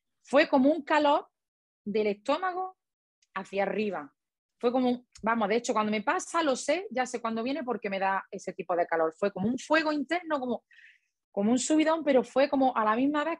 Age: 30-49